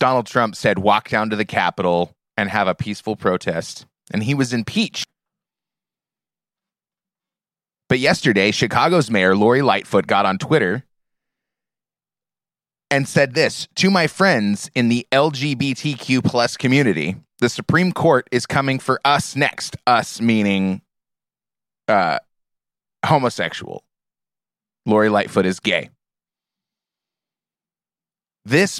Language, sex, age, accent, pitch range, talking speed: English, male, 30-49, American, 115-160 Hz, 115 wpm